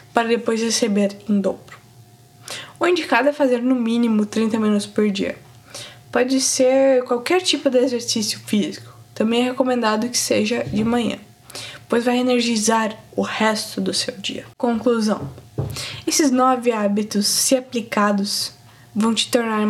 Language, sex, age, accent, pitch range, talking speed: Portuguese, female, 10-29, Brazilian, 210-255 Hz, 140 wpm